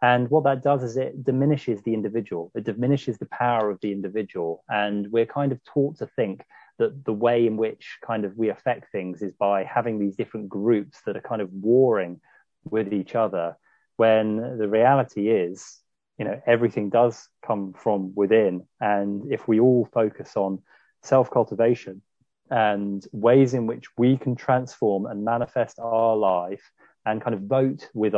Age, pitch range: 30-49, 100-120 Hz